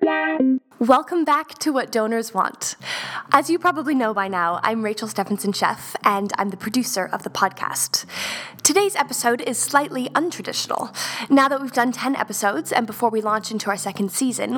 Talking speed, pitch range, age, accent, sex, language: 170 wpm, 200-260 Hz, 10-29, American, female, English